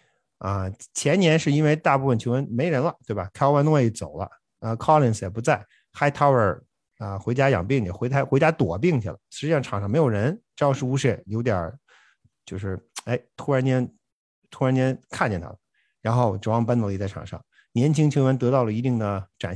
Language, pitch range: Chinese, 110-150 Hz